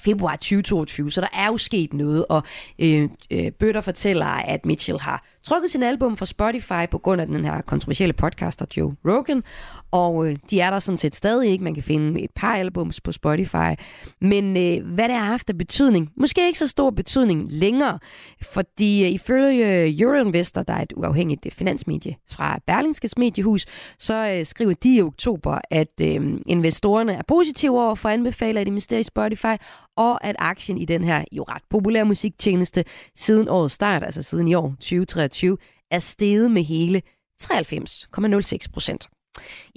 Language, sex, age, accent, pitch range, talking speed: Danish, female, 30-49, native, 165-225 Hz, 165 wpm